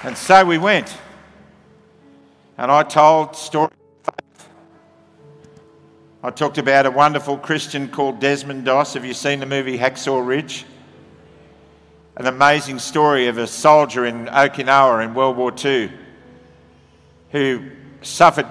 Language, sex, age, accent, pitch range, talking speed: English, male, 50-69, Australian, 125-145 Hz, 130 wpm